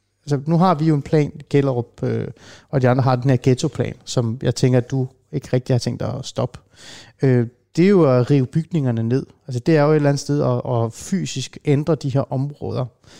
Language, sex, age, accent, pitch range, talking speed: Danish, male, 30-49, native, 125-150 Hz, 230 wpm